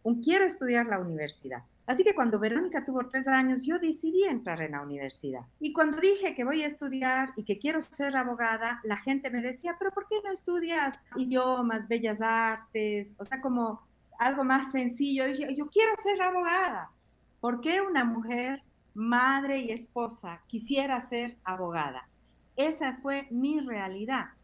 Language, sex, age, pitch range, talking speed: Spanish, female, 50-69, 220-280 Hz, 165 wpm